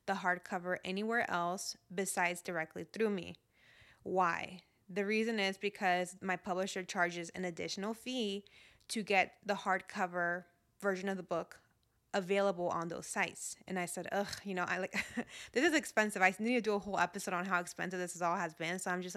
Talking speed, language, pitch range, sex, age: 185 wpm, English, 175-200 Hz, female, 20-39